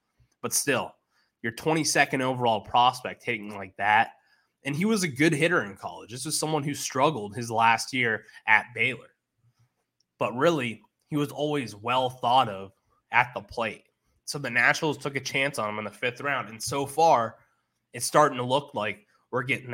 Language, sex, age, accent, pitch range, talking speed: English, male, 20-39, American, 115-140 Hz, 180 wpm